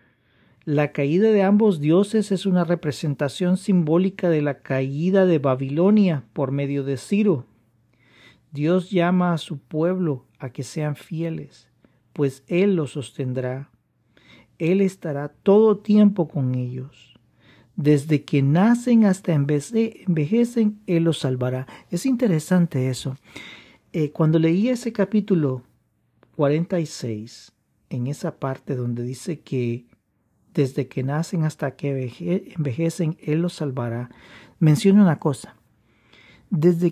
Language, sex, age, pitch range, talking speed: Spanish, male, 40-59, 130-175 Hz, 120 wpm